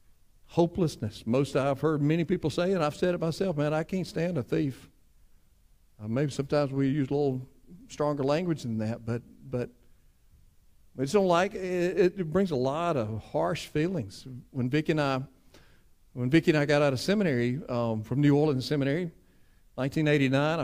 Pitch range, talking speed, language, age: 120-150 Hz, 170 wpm, English, 50-69